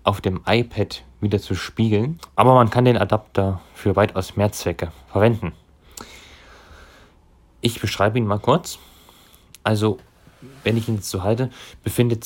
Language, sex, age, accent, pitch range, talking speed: German, male, 30-49, German, 95-120 Hz, 135 wpm